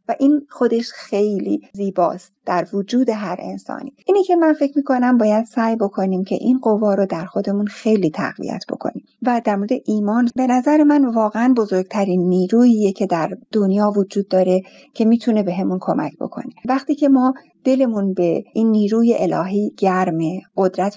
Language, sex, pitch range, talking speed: Persian, female, 190-250 Hz, 165 wpm